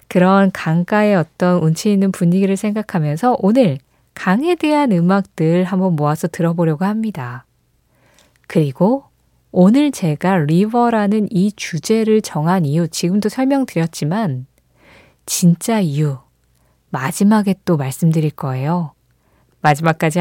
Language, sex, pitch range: Korean, female, 155-215 Hz